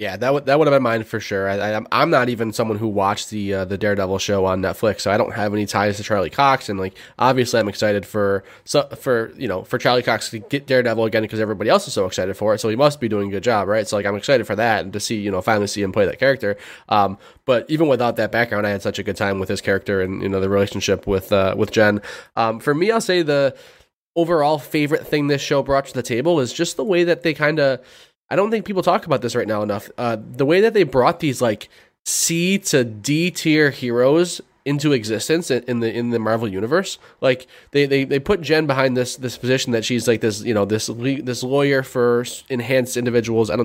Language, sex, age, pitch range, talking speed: English, male, 20-39, 105-140 Hz, 255 wpm